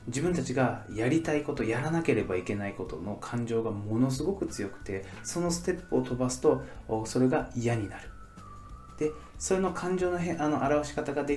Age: 20-39